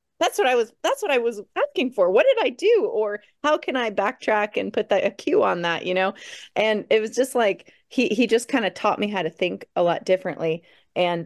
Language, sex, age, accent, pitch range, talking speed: English, female, 30-49, American, 165-205 Hz, 245 wpm